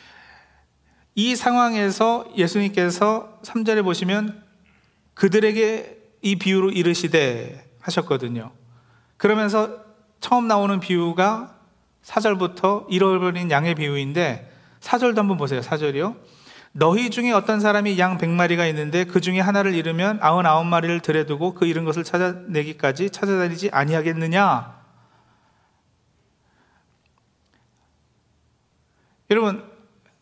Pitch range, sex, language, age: 165-210 Hz, male, Korean, 40-59